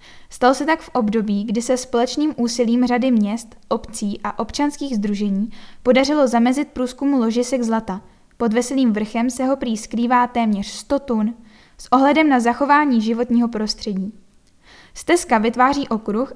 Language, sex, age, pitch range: Czech, female, 10-29, 225-260 Hz